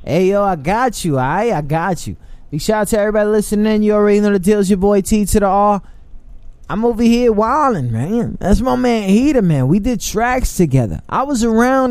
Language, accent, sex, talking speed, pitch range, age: English, American, male, 225 wpm, 135-205 Hz, 20-39